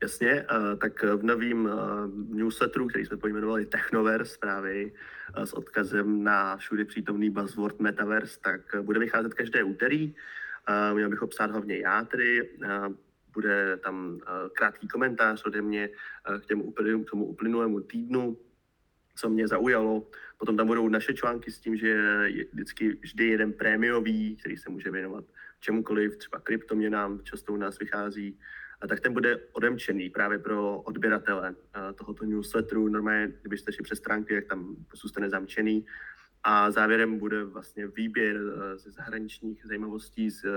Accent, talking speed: native, 140 wpm